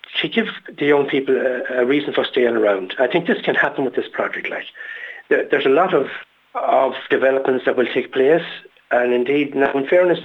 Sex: male